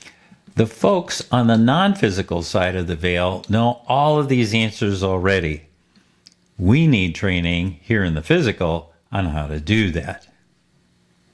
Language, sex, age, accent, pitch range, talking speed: English, male, 50-69, American, 90-120 Hz, 145 wpm